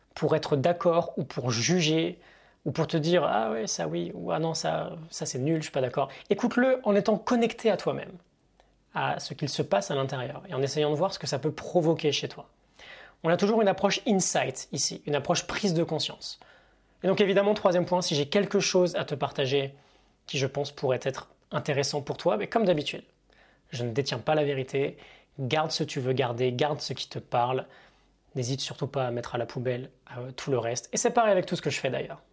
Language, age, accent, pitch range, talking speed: French, 20-39, French, 135-180 Hz, 240 wpm